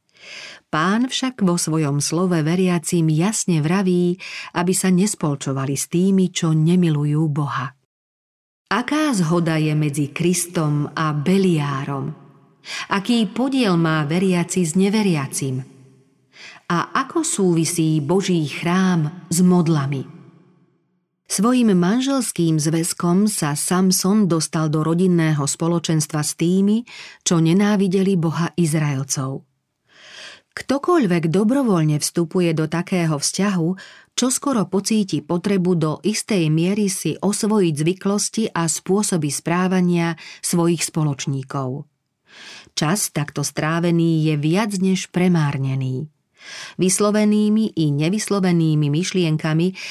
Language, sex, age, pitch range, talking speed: Slovak, female, 40-59, 155-195 Hz, 100 wpm